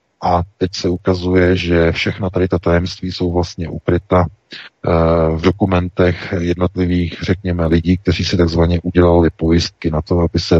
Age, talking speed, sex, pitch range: 40-59, 145 wpm, male, 85-95 Hz